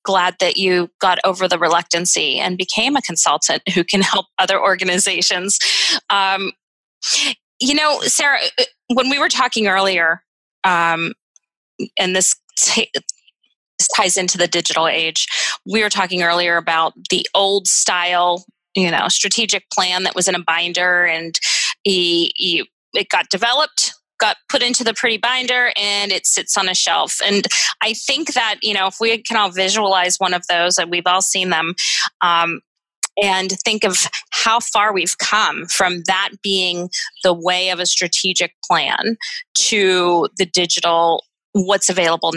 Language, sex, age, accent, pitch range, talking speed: English, female, 20-39, American, 175-220 Hz, 155 wpm